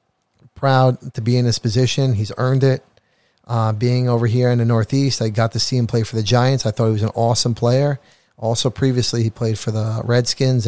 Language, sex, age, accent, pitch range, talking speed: English, male, 40-59, American, 110-130 Hz, 220 wpm